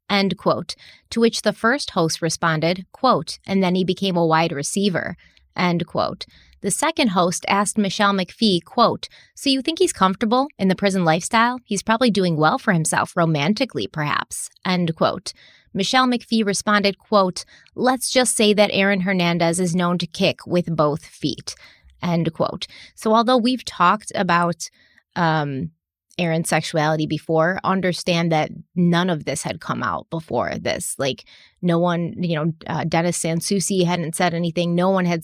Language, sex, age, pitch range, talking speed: English, female, 30-49, 165-200 Hz, 165 wpm